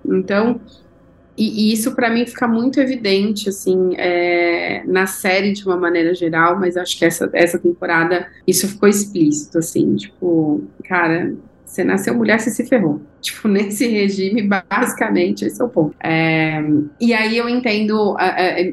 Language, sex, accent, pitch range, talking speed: Portuguese, female, Brazilian, 175-215 Hz, 155 wpm